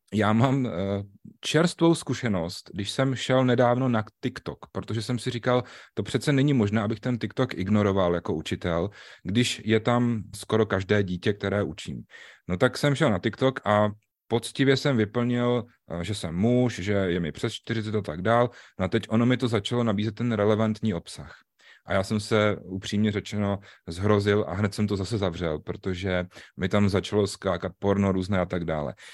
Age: 30-49